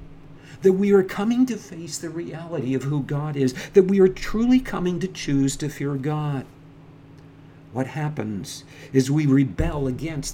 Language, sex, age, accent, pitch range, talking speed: English, male, 50-69, American, 140-165 Hz, 165 wpm